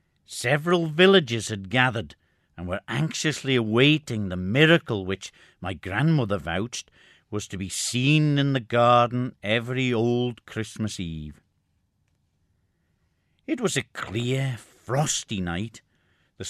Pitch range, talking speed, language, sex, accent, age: 105-140 Hz, 115 wpm, English, male, British, 60-79